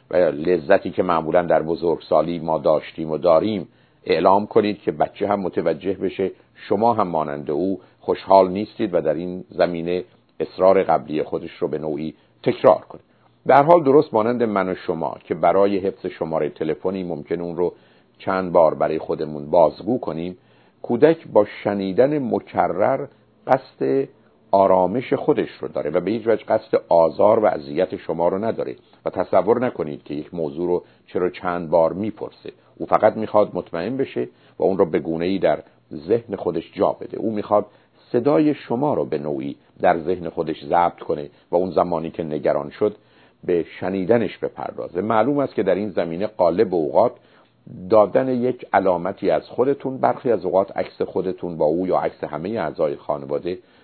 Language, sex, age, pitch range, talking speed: Persian, male, 50-69, 85-110 Hz, 165 wpm